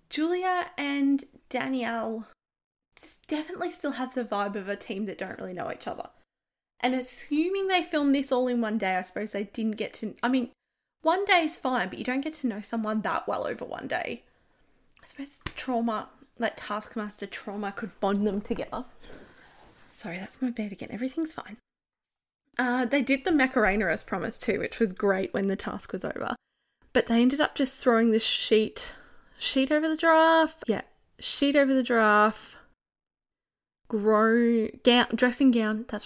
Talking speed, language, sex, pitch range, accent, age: 175 wpm, English, female, 210-275 Hz, Australian, 10-29